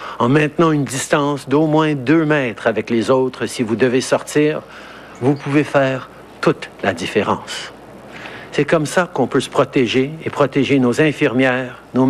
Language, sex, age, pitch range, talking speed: French, male, 60-79, 115-140 Hz, 165 wpm